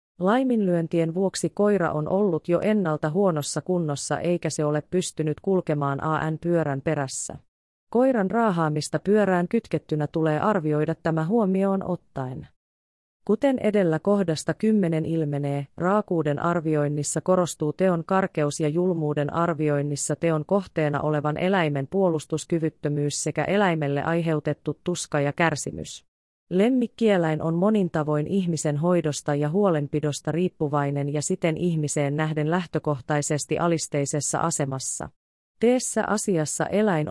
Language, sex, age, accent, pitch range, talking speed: Finnish, female, 30-49, native, 150-180 Hz, 110 wpm